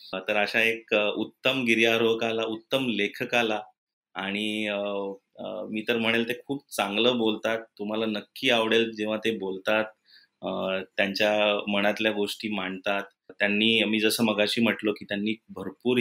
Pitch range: 105-115 Hz